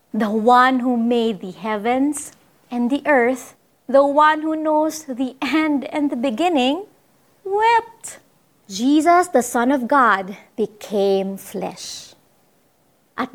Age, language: 30-49, Filipino